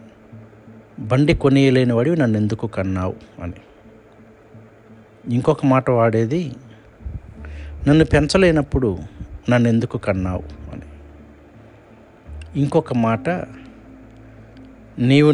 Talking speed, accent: 75 wpm, native